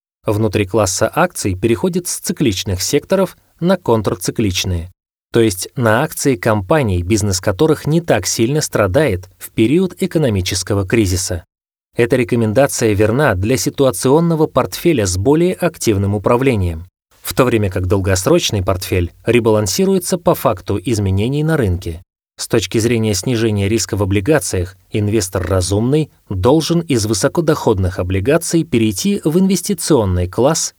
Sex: male